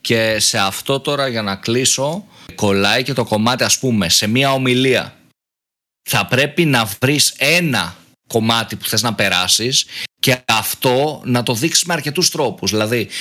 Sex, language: male, Greek